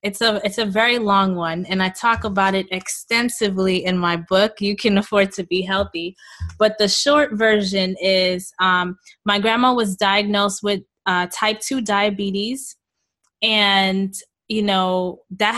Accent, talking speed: American, 160 wpm